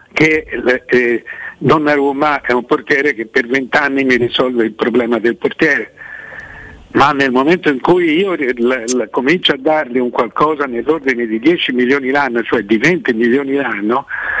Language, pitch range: Italian, 120-155 Hz